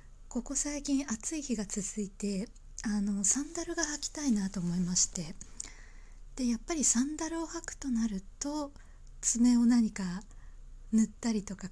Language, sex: Japanese, female